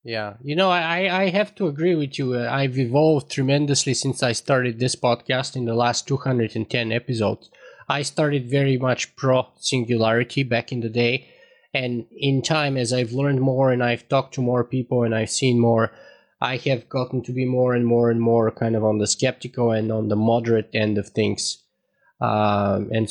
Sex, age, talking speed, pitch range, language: male, 20-39, 195 wpm, 120-170 Hz, English